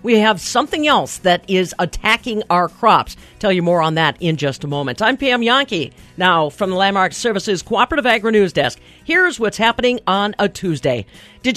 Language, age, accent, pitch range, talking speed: English, 50-69, American, 175-260 Hz, 185 wpm